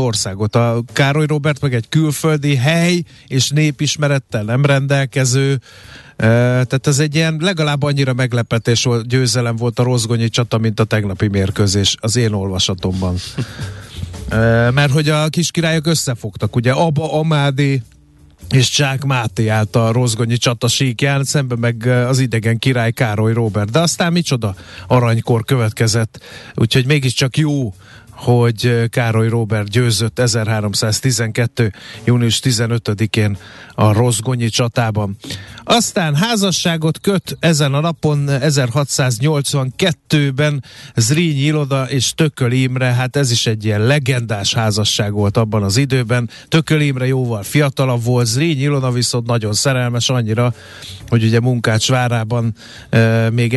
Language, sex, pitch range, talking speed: Hungarian, male, 115-140 Hz, 130 wpm